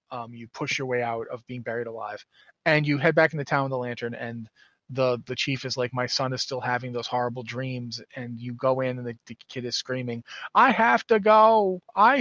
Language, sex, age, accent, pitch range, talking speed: English, male, 30-49, American, 125-155 Hz, 240 wpm